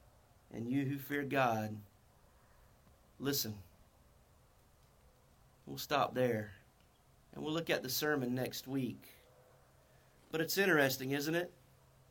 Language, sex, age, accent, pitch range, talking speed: English, male, 40-59, American, 125-155 Hz, 110 wpm